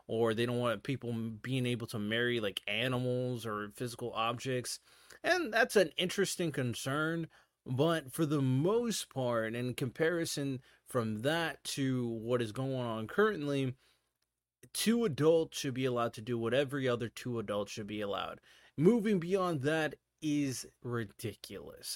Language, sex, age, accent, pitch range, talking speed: English, male, 20-39, American, 120-180 Hz, 150 wpm